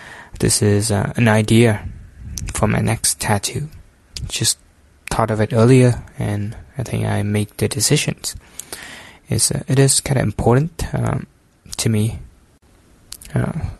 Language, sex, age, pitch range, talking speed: English, male, 20-39, 105-125 Hz, 140 wpm